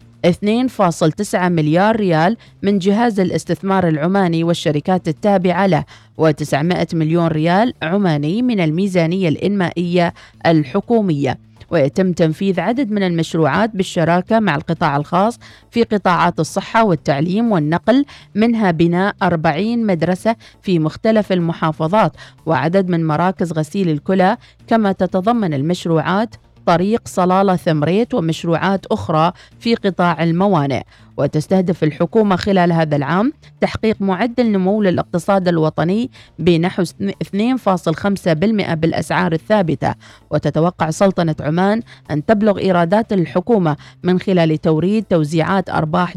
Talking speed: 105 wpm